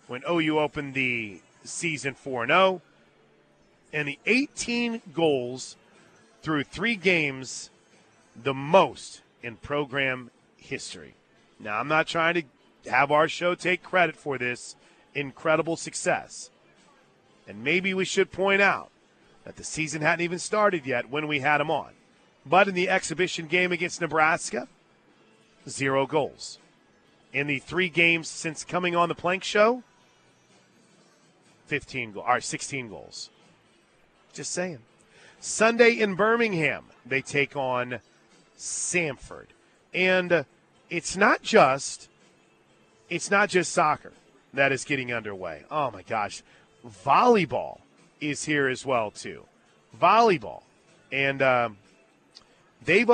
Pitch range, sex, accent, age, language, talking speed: 135-180 Hz, male, American, 40-59, English, 120 wpm